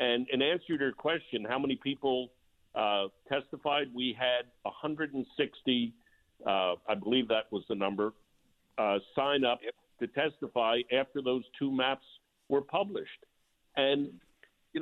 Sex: male